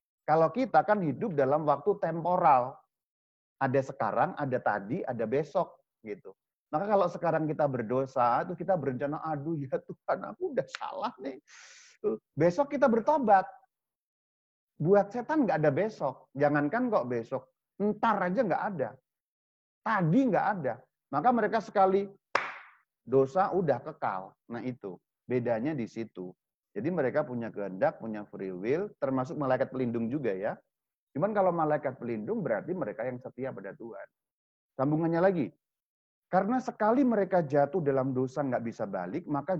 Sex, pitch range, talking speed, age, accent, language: male, 130-205 Hz, 140 wpm, 40-59, native, Indonesian